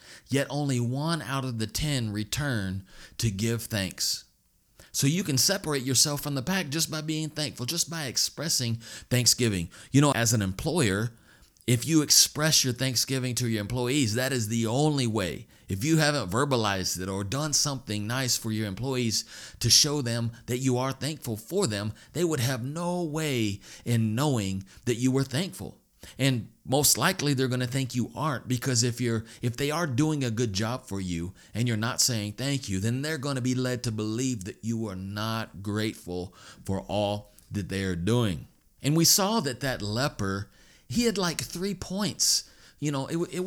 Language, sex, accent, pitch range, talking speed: English, male, American, 110-145 Hz, 190 wpm